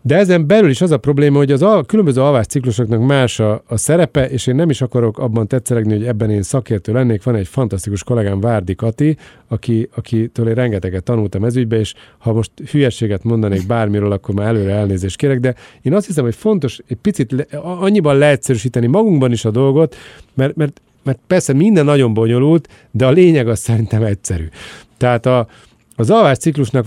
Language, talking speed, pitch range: Hungarian, 190 wpm, 115-145 Hz